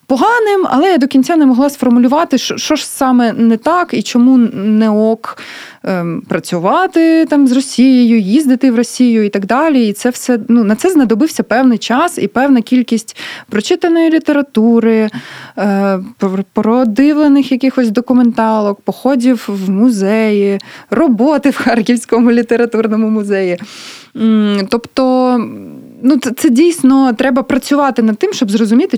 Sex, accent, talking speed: female, native, 130 wpm